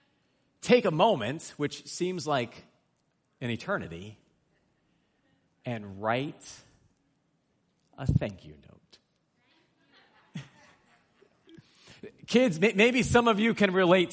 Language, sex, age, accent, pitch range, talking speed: English, male, 40-59, American, 130-190 Hz, 90 wpm